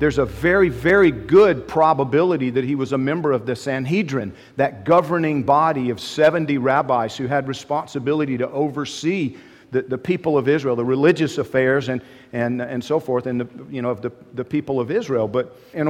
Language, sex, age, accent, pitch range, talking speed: English, male, 50-69, American, 130-160 Hz, 190 wpm